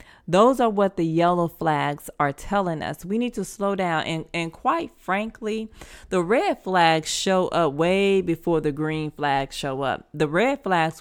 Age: 20-39